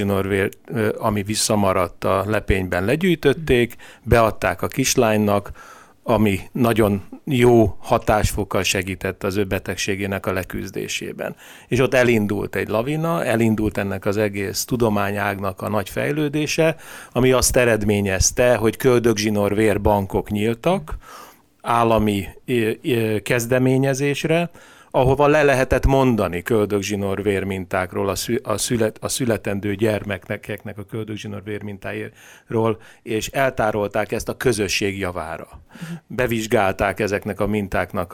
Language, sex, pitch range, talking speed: Hungarian, male, 100-125 Hz, 100 wpm